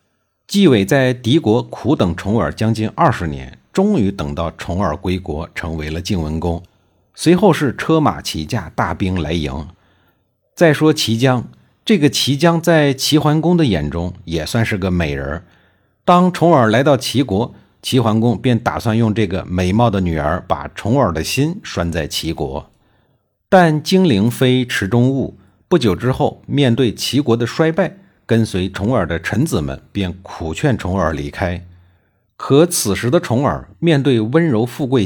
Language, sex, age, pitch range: Chinese, male, 50-69, 90-145 Hz